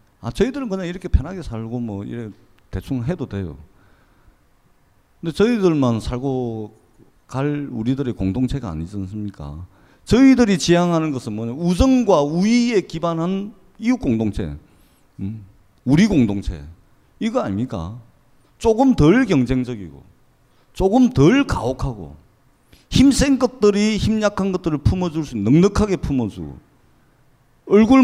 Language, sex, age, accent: Korean, male, 40-59, native